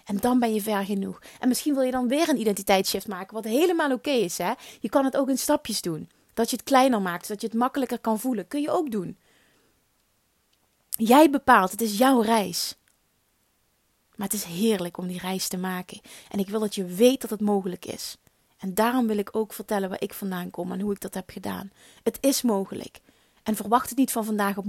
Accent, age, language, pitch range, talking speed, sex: Dutch, 30-49, Dutch, 205-265 Hz, 225 wpm, female